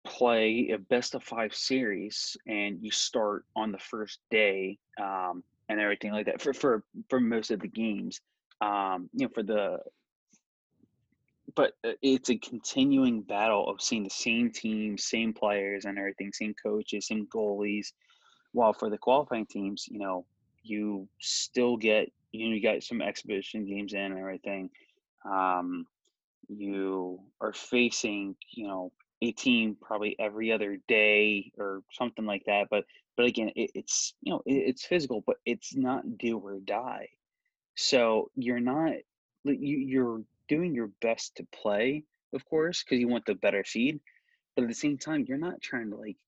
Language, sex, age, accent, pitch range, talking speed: English, male, 20-39, American, 100-130 Hz, 165 wpm